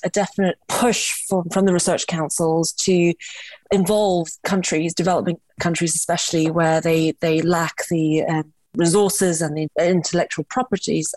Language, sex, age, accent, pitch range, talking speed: English, female, 30-49, British, 165-190 Hz, 135 wpm